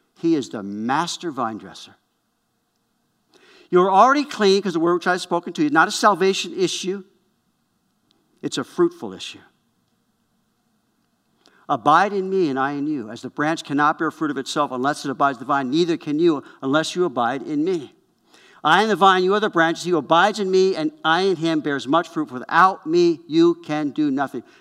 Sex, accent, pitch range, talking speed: male, American, 150-215 Hz, 200 wpm